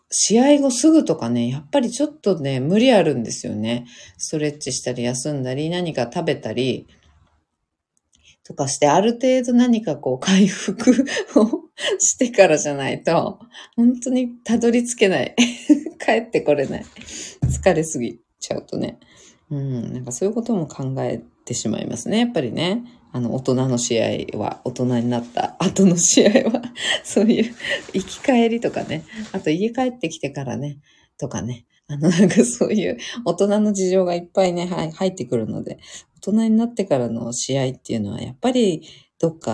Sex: female